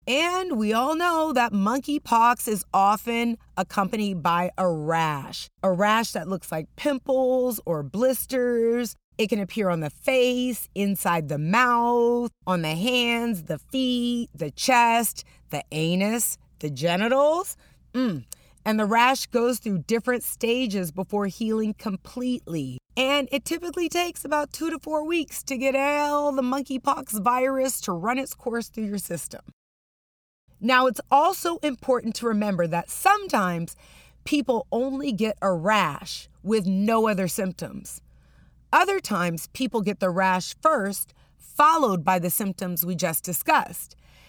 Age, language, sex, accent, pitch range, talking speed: 30-49, English, female, American, 185-260 Hz, 140 wpm